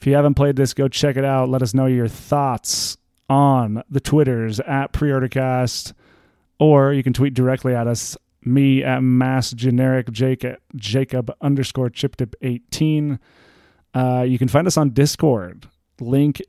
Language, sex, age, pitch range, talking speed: English, male, 30-49, 125-145 Hz, 155 wpm